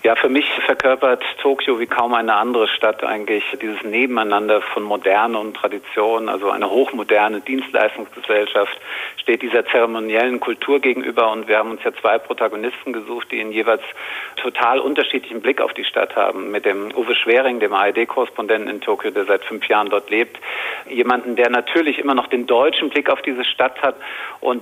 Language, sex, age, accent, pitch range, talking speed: German, male, 50-69, German, 110-150 Hz, 175 wpm